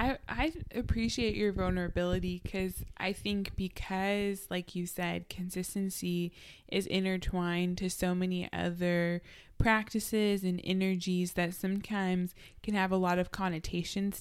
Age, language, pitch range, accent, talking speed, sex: 20-39, English, 170-195 Hz, American, 125 wpm, female